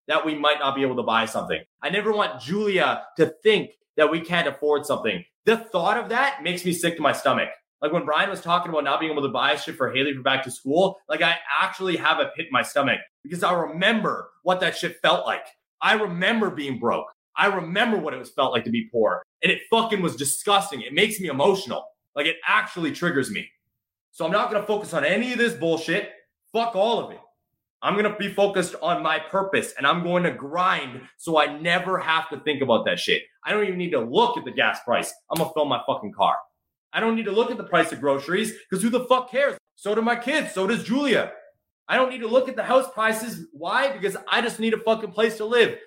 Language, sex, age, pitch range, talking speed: English, male, 30-49, 155-220 Hz, 245 wpm